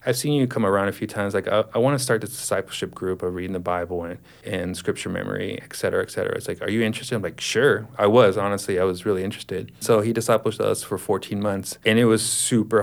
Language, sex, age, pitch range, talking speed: English, male, 30-49, 95-115 Hz, 255 wpm